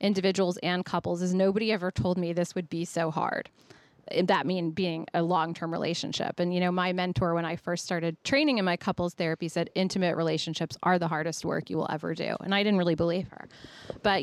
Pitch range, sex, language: 170-190 Hz, female, English